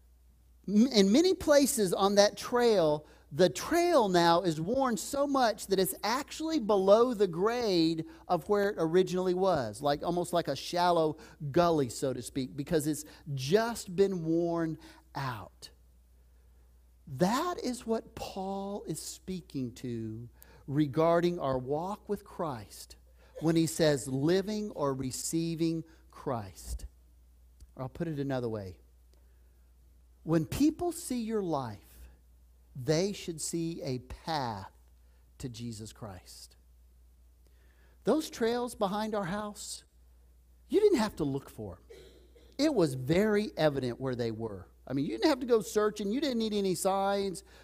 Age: 40-59